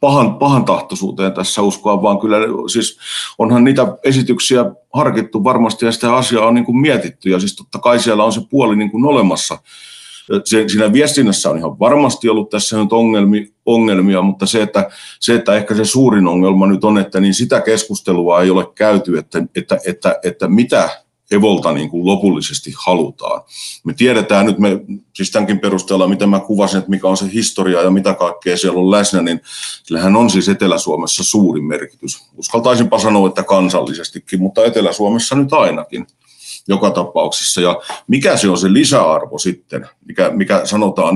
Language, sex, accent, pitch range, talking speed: Finnish, male, native, 95-115 Hz, 165 wpm